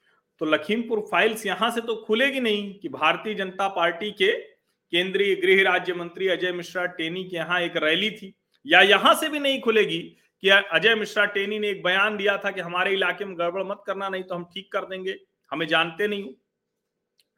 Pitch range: 170-230 Hz